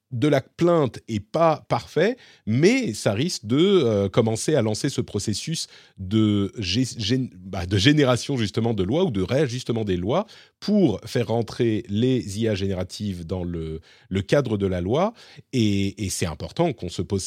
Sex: male